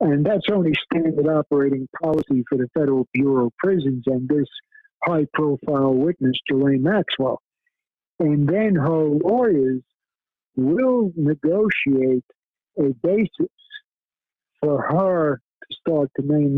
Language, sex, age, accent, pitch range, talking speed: English, male, 50-69, American, 140-170 Hz, 115 wpm